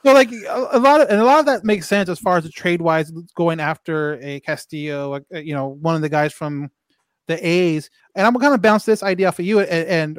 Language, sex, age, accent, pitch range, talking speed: English, male, 30-49, American, 145-180 Hz, 270 wpm